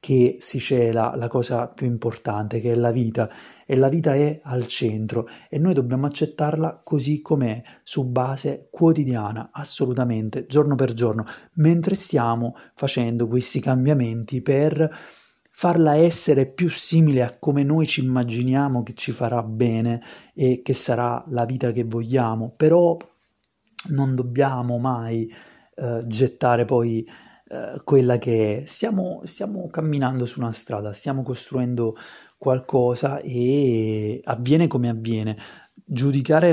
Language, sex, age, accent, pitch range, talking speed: Italian, male, 30-49, native, 115-140 Hz, 130 wpm